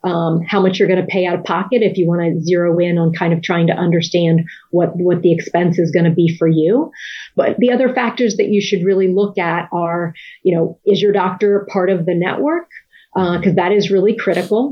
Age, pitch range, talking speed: 30-49, 170-195 Hz, 235 wpm